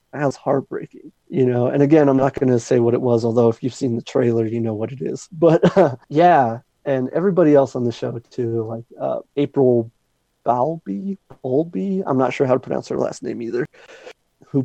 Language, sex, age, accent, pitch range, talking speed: English, male, 30-49, American, 120-145 Hz, 210 wpm